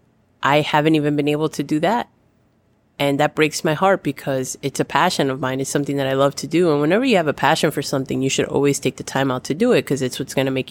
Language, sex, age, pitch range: English, female, 20-39, 135-150 Hz